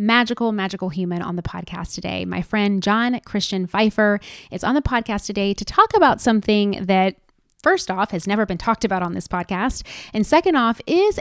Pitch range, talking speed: 180-210 Hz, 195 wpm